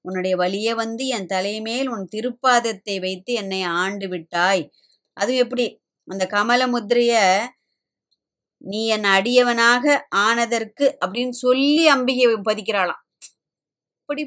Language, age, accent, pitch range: Tamil, 20-39, native, 195-255 Hz